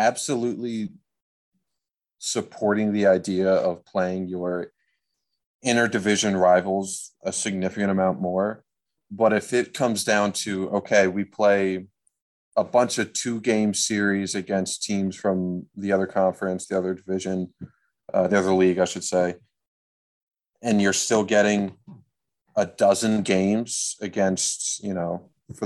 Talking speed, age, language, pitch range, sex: 130 wpm, 30-49, English, 95-105 Hz, male